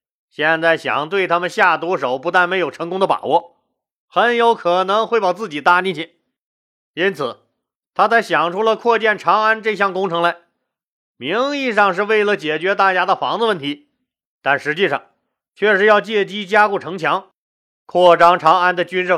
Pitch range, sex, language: 170-225 Hz, male, Chinese